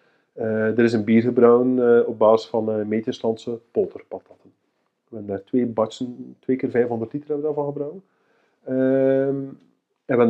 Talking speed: 165 wpm